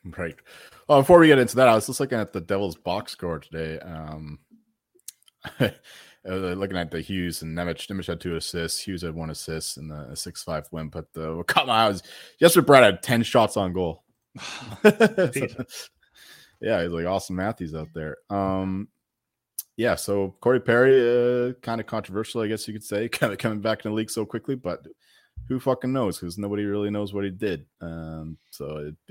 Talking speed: 200 wpm